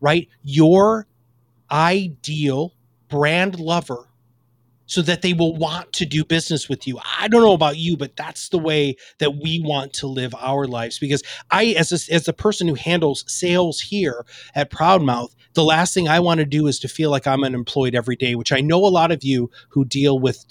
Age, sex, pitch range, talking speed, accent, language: 30-49, male, 130-165 Hz, 200 wpm, American, English